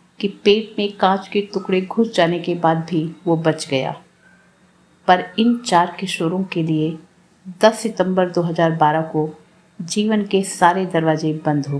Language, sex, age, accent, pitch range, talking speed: Hindi, female, 50-69, native, 165-205 Hz, 160 wpm